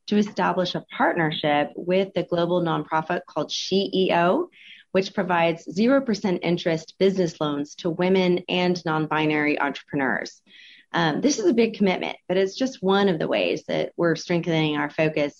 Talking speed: 150 wpm